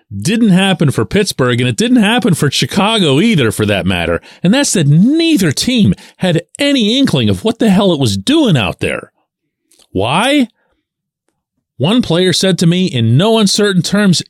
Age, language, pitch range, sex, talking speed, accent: 40-59, English, 125-200 Hz, male, 170 wpm, American